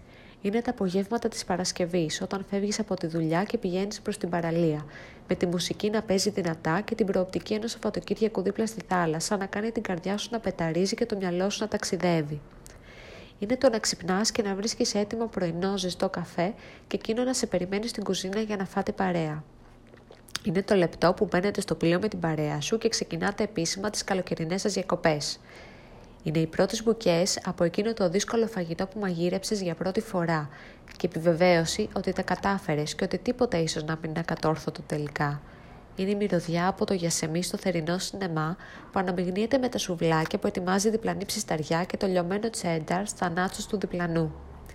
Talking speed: 180 wpm